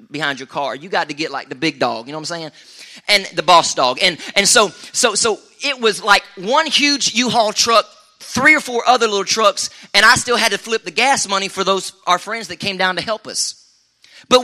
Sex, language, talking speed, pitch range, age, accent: male, English, 240 wpm, 165-225 Hz, 30-49, American